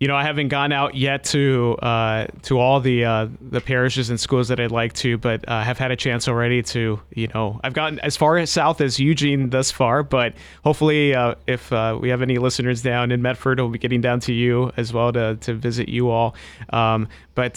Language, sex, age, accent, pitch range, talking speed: English, male, 30-49, American, 110-130 Hz, 235 wpm